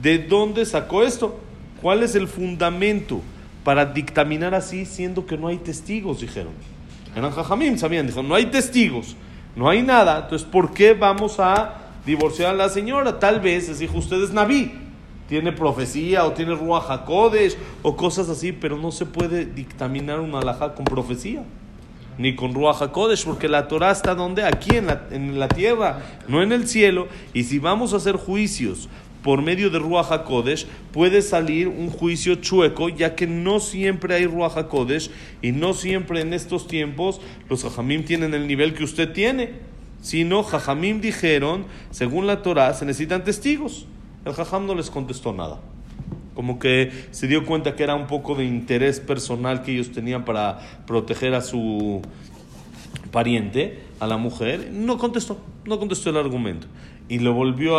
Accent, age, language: Mexican, 40-59, Spanish